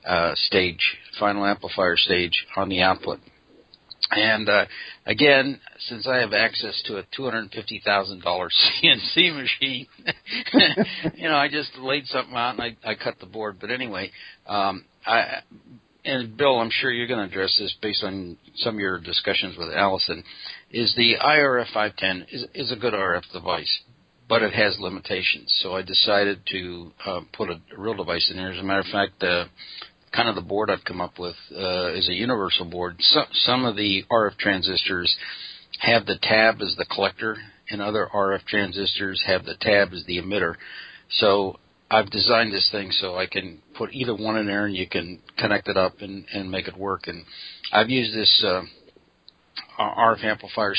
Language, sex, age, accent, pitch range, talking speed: English, male, 60-79, American, 95-110 Hz, 185 wpm